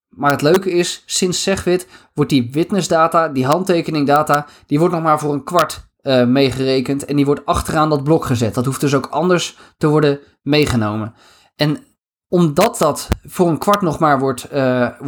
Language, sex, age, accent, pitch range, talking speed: Dutch, male, 20-39, Dutch, 130-165 Hz, 185 wpm